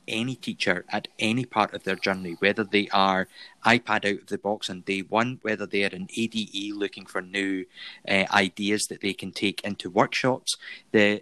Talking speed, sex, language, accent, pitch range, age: 195 wpm, male, English, British, 95-110 Hz, 30-49